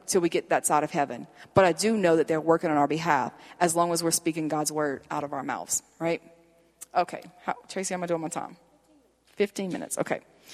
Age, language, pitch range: 40-59, English, 165-200 Hz